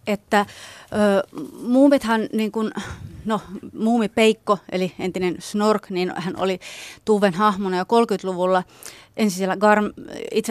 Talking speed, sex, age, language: 120 wpm, female, 30-49, Finnish